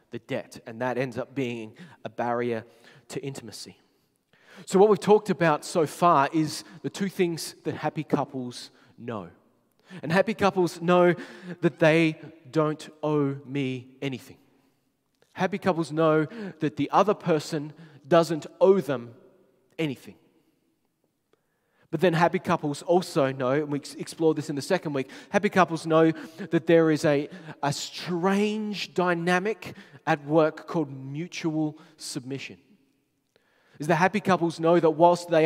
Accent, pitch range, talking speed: Australian, 135-175 Hz, 140 wpm